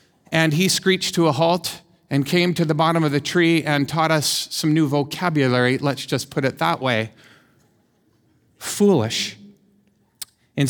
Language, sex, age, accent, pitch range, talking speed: English, male, 50-69, American, 140-180 Hz, 155 wpm